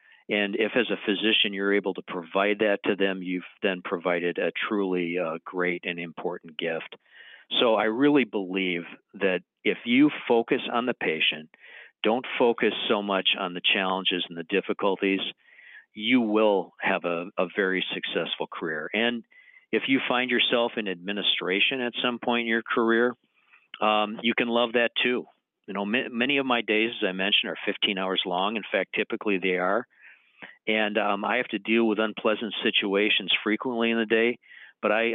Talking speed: 175 wpm